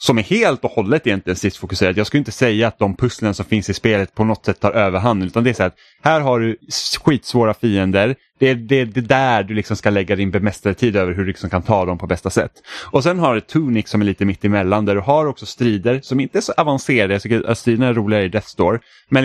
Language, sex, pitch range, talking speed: Swedish, male, 100-125 Hz, 270 wpm